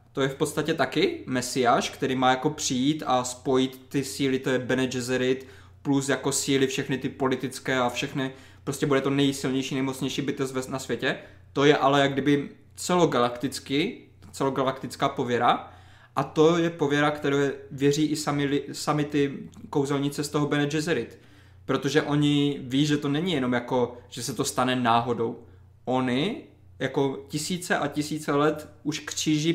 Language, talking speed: Czech, 160 wpm